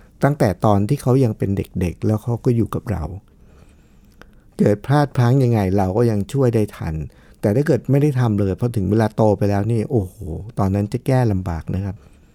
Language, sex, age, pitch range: Thai, male, 60-79, 100-140 Hz